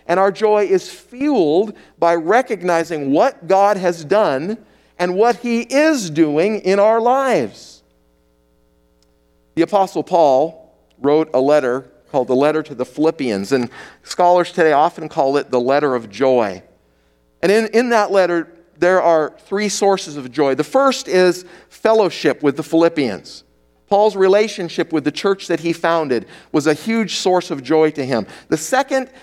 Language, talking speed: English, 160 wpm